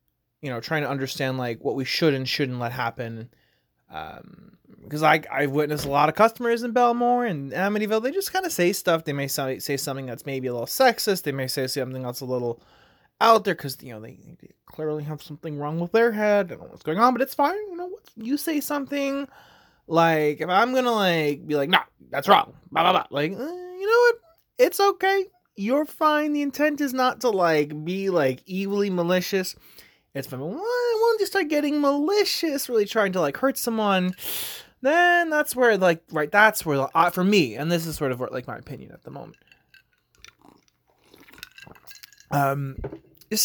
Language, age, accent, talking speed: English, 20-39, American, 205 wpm